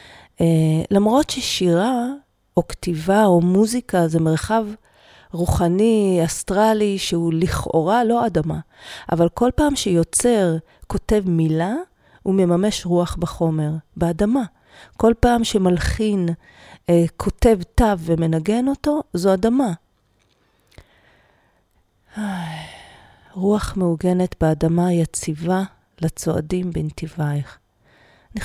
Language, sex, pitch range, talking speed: Hebrew, female, 165-210 Hz, 95 wpm